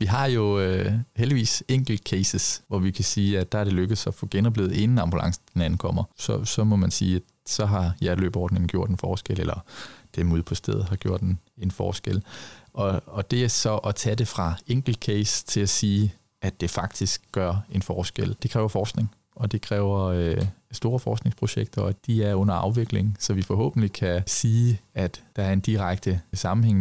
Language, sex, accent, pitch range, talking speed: Danish, male, native, 95-110 Hz, 195 wpm